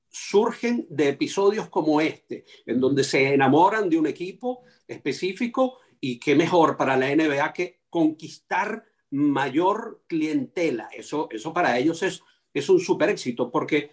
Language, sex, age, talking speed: Spanish, male, 50-69, 140 wpm